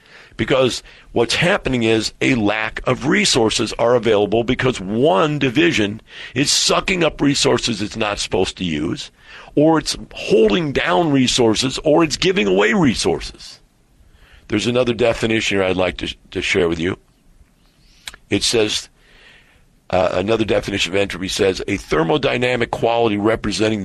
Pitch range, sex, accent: 105-145 Hz, male, American